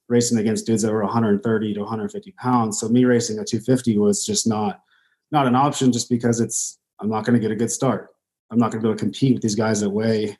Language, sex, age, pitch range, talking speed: English, male, 20-39, 115-130 Hz, 255 wpm